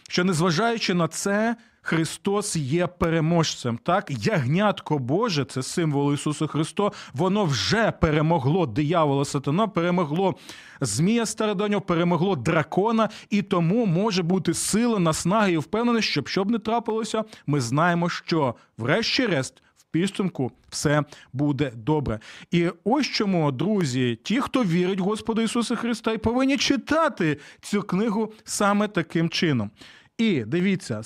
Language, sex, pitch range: Ukrainian, male, 150-200 Hz